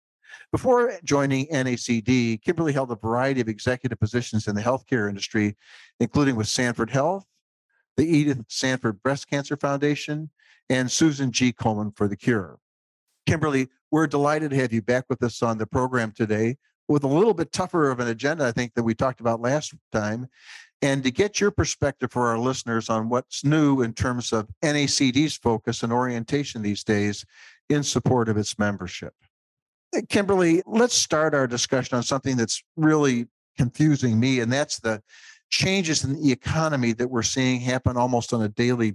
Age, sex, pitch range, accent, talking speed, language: 50-69, male, 115-140 Hz, American, 170 wpm, English